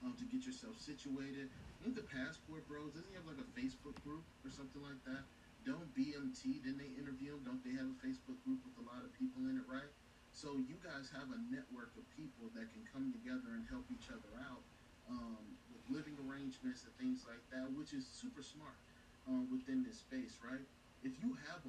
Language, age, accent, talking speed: English, 30-49, American, 210 wpm